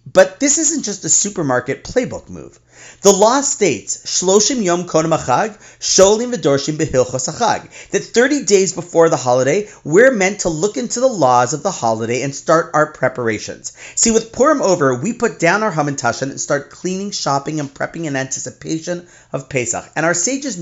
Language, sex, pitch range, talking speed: English, male, 140-200 Hz, 155 wpm